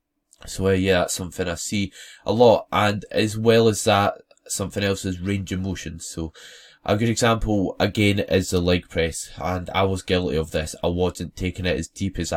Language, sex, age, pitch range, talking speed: English, male, 10-29, 90-105 Hz, 205 wpm